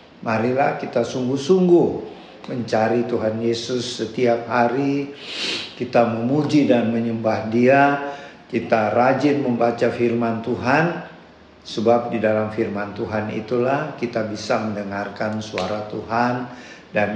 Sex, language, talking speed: male, Indonesian, 105 wpm